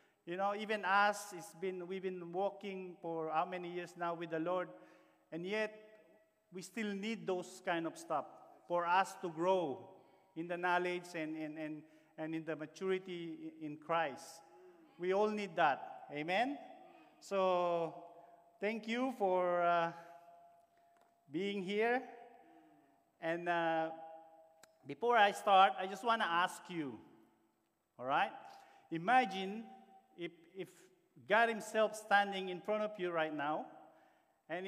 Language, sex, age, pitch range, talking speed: English, male, 40-59, 170-220 Hz, 135 wpm